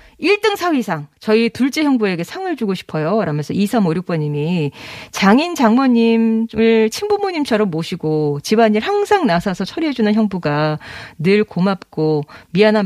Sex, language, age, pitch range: female, Korean, 40-59, 170-260 Hz